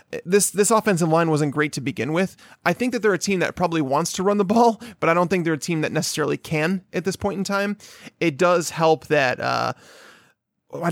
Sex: male